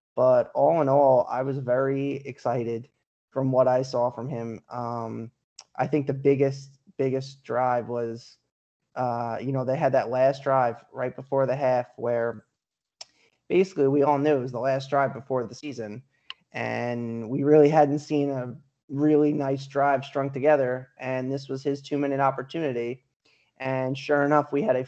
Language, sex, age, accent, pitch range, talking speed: English, male, 20-39, American, 125-145 Hz, 170 wpm